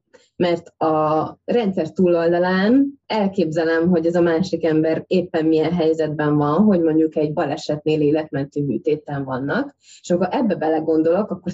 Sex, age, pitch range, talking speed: female, 20-39, 160-195 Hz, 135 wpm